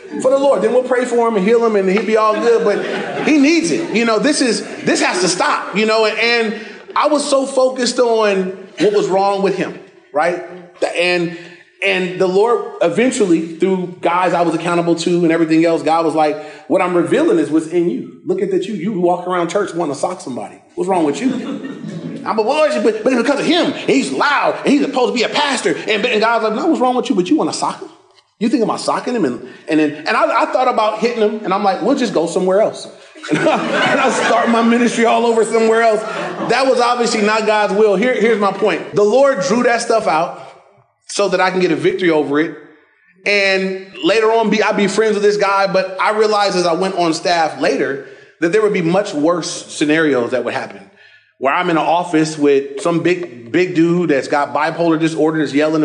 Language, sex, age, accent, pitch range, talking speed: English, male, 30-49, American, 175-235 Hz, 235 wpm